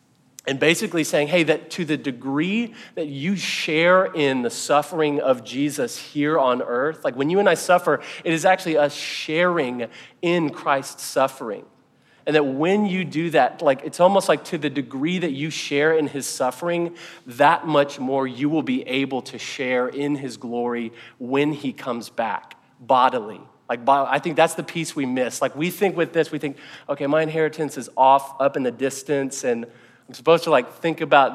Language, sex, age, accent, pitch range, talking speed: English, male, 40-59, American, 135-160 Hz, 190 wpm